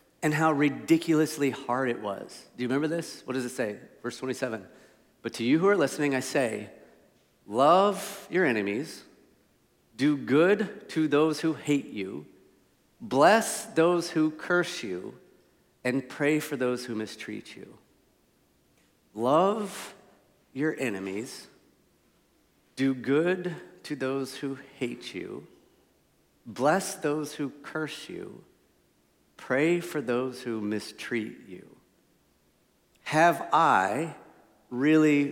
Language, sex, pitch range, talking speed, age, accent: English, male, 120-160 Hz, 120 wpm, 40-59, American